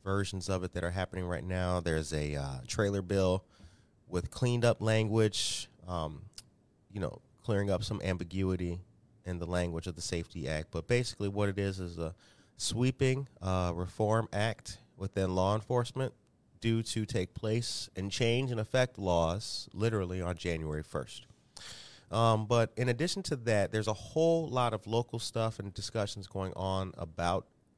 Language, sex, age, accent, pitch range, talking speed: English, male, 30-49, American, 95-115 Hz, 165 wpm